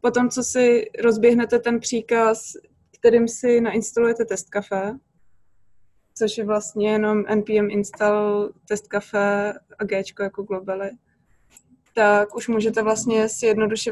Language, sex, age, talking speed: Czech, female, 20-39, 115 wpm